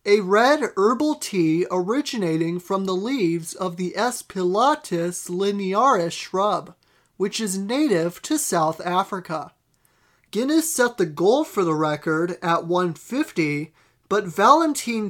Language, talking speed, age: English, 120 wpm, 30-49